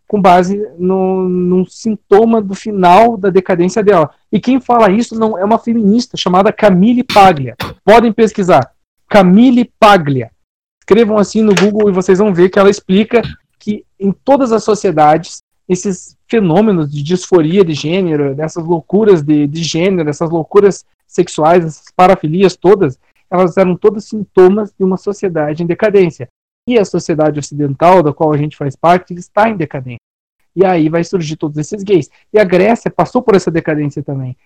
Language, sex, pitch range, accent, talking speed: Portuguese, male, 155-200 Hz, Brazilian, 165 wpm